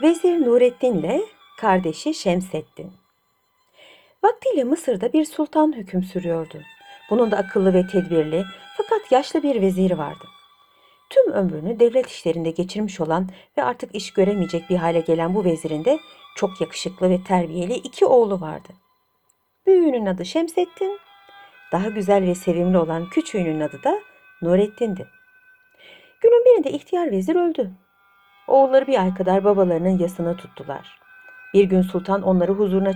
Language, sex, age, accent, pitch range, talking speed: Turkish, female, 60-79, native, 180-295 Hz, 135 wpm